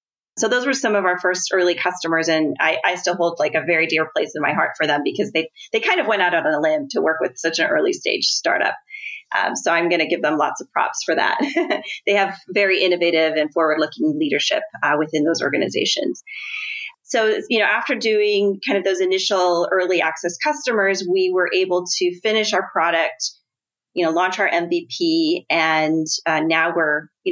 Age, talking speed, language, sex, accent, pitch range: 30-49, 210 wpm, English, female, American, 160-220 Hz